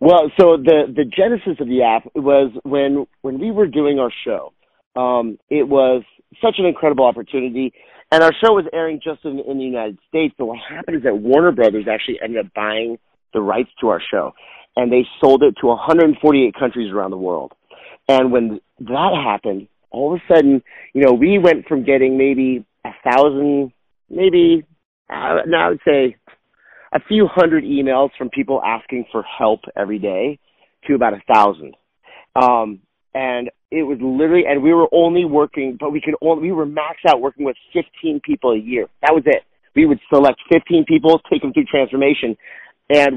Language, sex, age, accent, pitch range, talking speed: English, male, 30-49, American, 130-165 Hz, 190 wpm